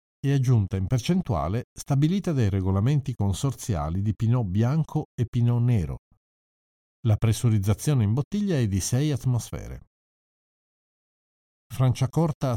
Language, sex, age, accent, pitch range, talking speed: Italian, male, 50-69, native, 95-130 Hz, 110 wpm